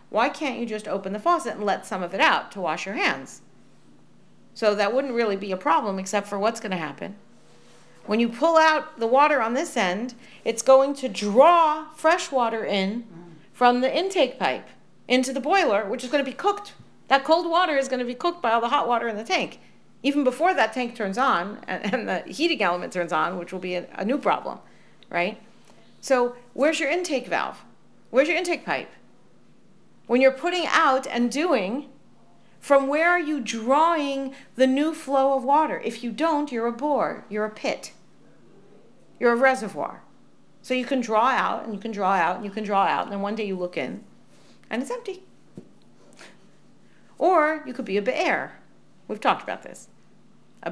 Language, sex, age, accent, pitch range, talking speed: English, female, 40-59, American, 220-295 Hz, 200 wpm